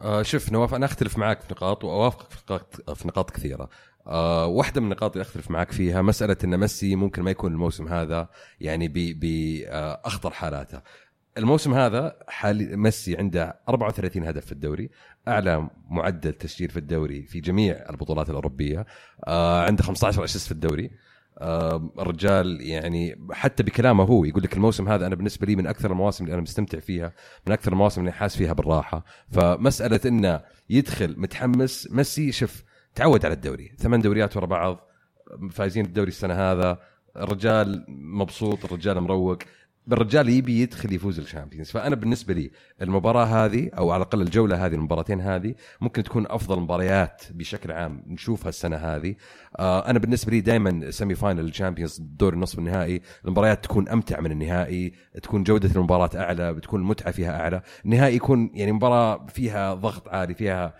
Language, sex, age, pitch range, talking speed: Arabic, male, 30-49, 85-110 Hz, 155 wpm